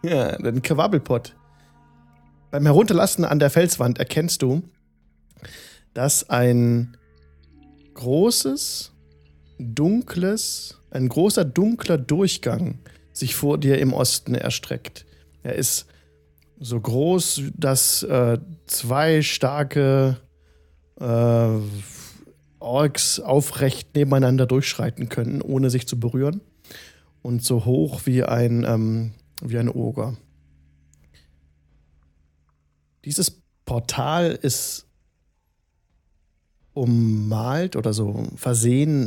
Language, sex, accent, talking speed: German, male, German, 90 wpm